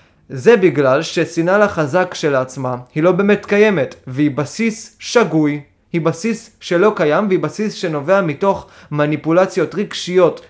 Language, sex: Hebrew, male